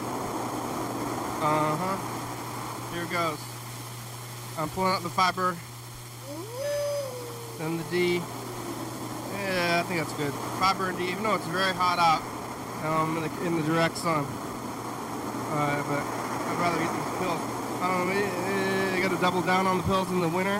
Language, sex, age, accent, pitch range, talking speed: English, male, 20-39, American, 145-180 Hz, 150 wpm